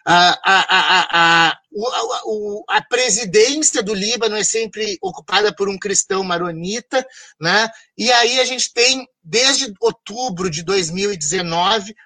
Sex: male